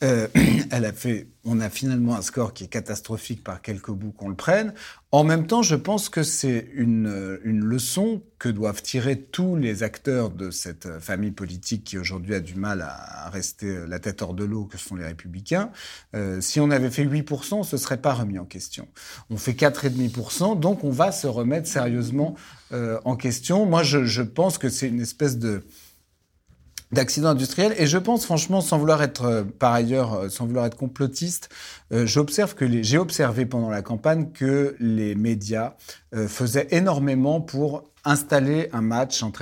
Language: French